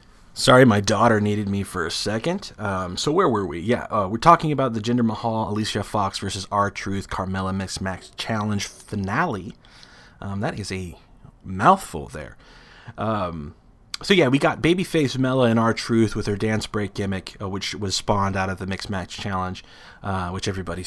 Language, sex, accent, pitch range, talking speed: English, male, American, 95-115 Hz, 180 wpm